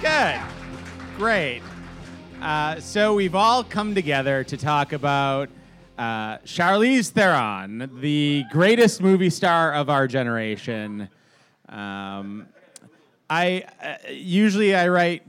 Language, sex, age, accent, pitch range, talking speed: English, male, 30-49, American, 140-215 Hz, 105 wpm